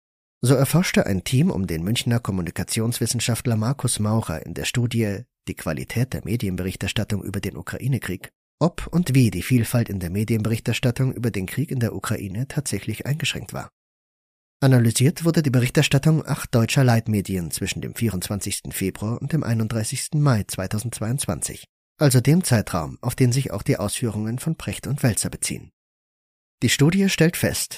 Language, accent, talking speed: German, German, 155 wpm